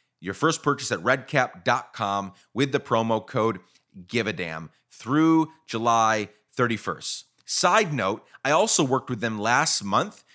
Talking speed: 140 wpm